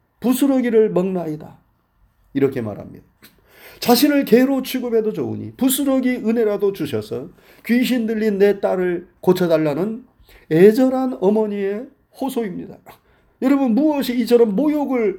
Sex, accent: male, native